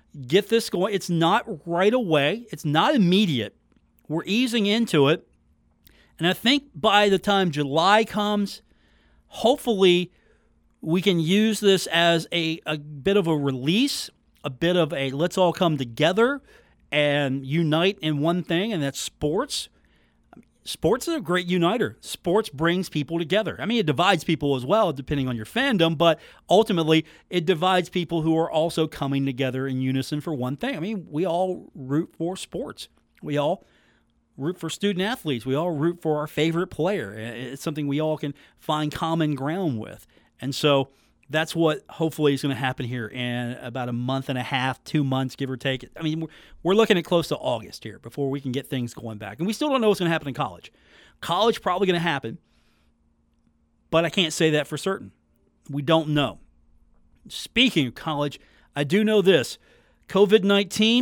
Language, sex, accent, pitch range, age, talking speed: English, male, American, 140-185 Hz, 40-59, 185 wpm